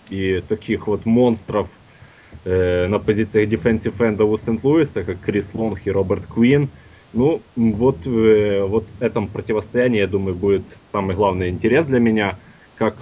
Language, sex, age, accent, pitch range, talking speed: Russian, male, 20-39, native, 95-115 Hz, 145 wpm